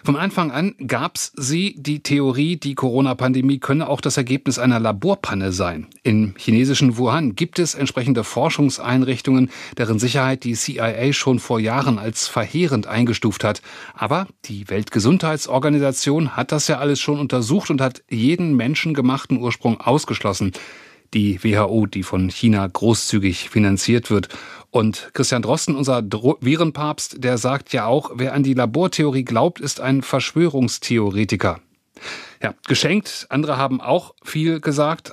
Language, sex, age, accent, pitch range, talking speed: German, male, 30-49, German, 120-145 Hz, 140 wpm